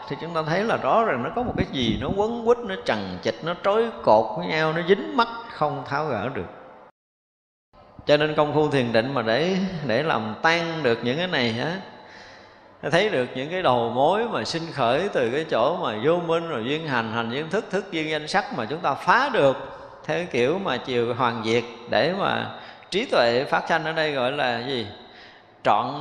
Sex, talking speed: male, 215 wpm